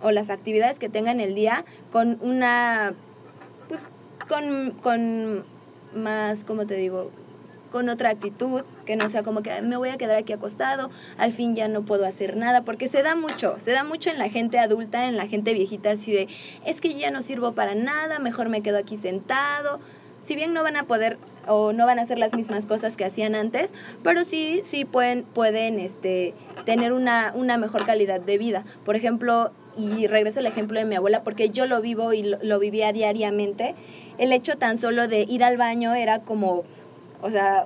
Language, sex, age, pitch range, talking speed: Spanish, female, 20-39, 210-250 Hz, 200 wpm